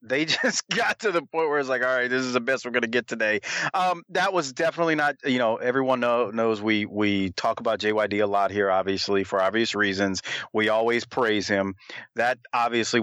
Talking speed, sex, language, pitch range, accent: 220 wpm, male, English, 105-135 Hz, American